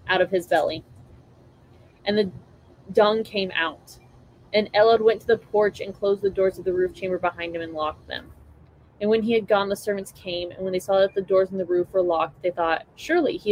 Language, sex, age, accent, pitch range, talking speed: English, female, 20-39, American, 130-195 Hz, 230 wpm